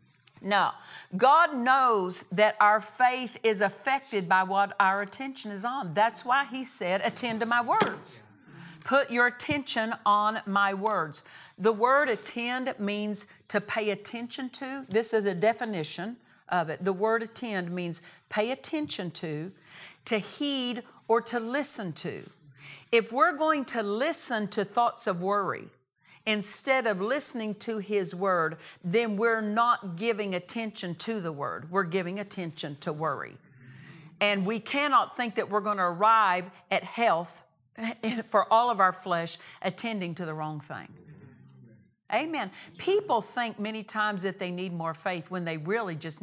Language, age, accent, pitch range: English, 50-69, American, 175-230 Hz